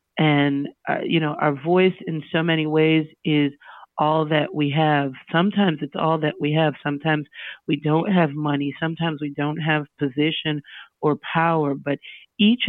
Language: English